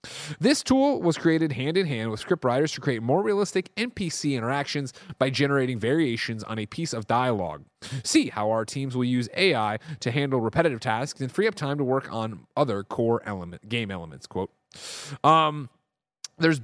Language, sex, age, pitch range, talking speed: English, male, 30-49, 120-160 Hz, 165 wpm